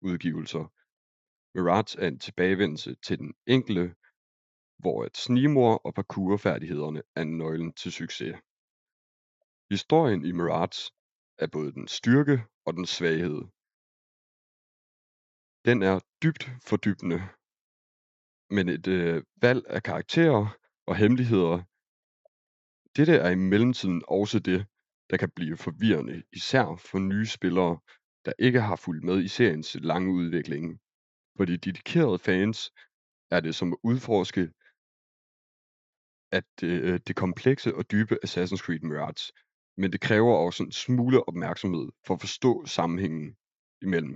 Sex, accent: male, native